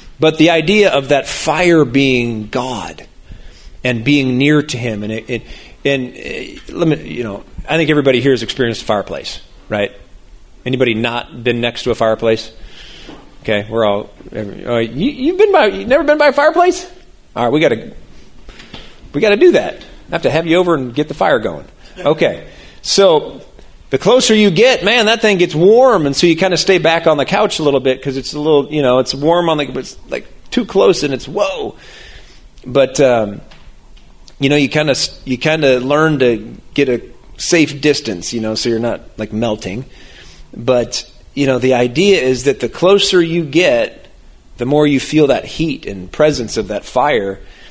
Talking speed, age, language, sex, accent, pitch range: 200 wpm, 40-59, English, male, American, 120-165 Hz